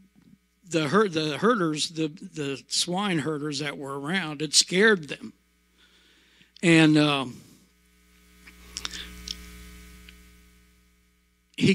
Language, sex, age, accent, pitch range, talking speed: English, male, 60-79, American, 140-170 Hz, 85 wpm